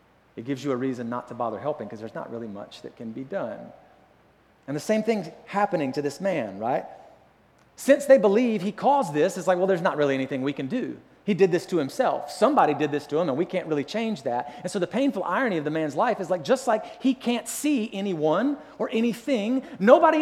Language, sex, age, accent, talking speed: English, male, 30-49, American, 235 wpm